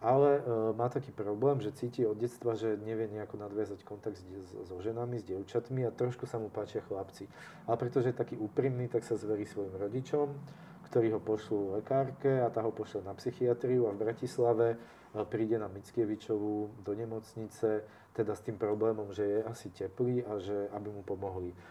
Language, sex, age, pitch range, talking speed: Slovak, male, 40-59, 100-115 Hz, 180 wpm